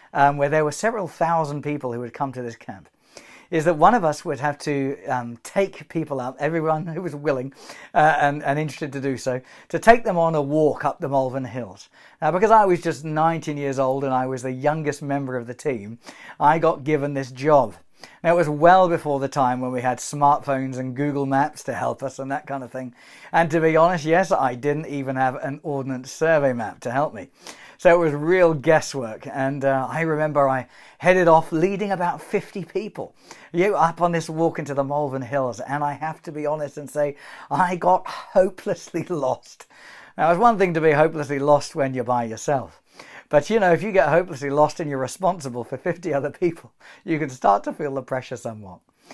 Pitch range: 135-165 Hz